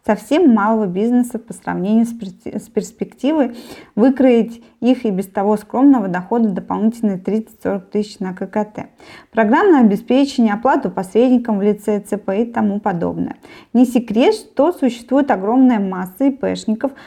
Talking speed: 125 wpm